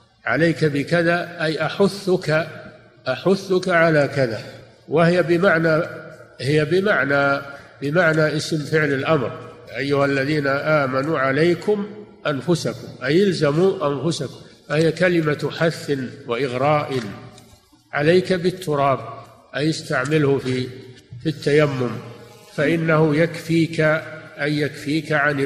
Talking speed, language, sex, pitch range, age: 90 wpm, Arabic, male, 135-165 Hz, 50-69